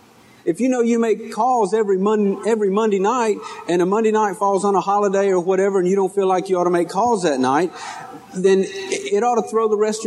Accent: American